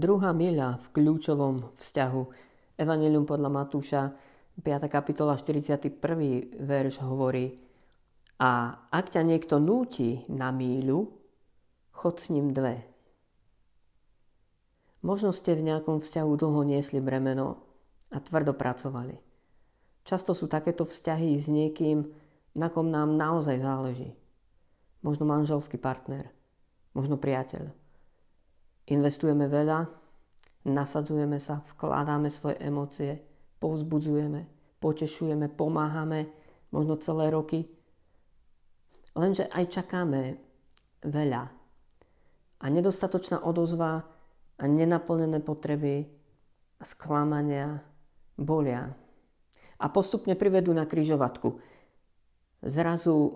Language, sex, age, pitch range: Slovak, female, 40-59, 135-160 Hz